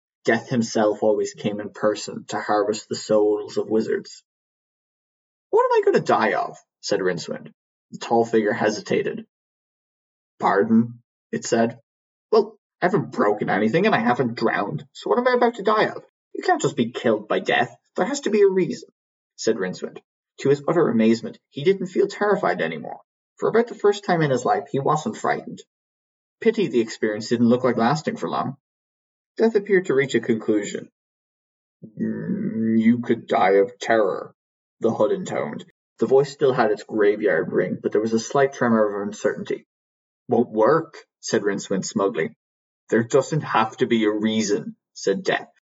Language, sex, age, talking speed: English, male, 20-39, 175 wpm